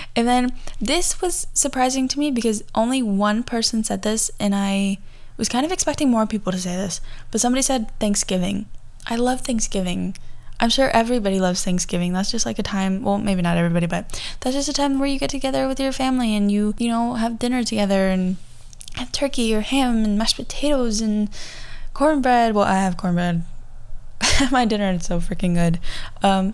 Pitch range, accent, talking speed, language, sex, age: 185-235 Hz, American, 190 wpm, English, female, 10-29